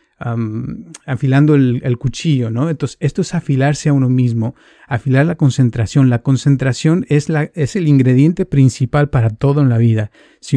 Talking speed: 160 wpm